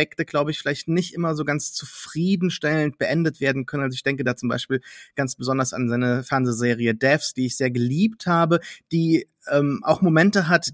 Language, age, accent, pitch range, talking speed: German, 30-49, German, 135-170 Hz, 185 wpm